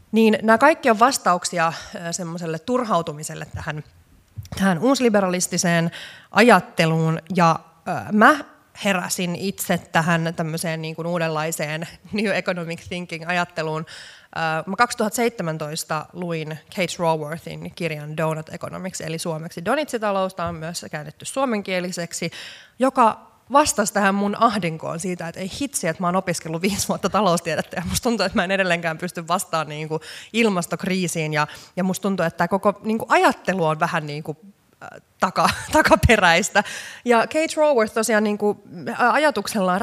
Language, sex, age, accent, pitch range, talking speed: Finnish, female, 20-39, native, 160-205 Hz, 135 wpm